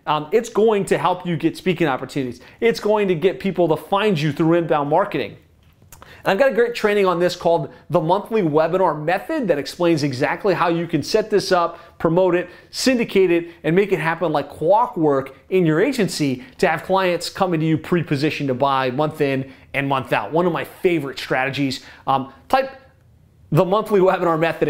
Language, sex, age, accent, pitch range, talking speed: English, male, 30-49, American, 145-195 Hz, 195 wpm